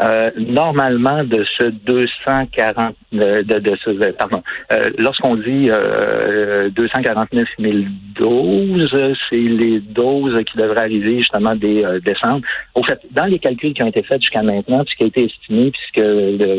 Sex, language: male, French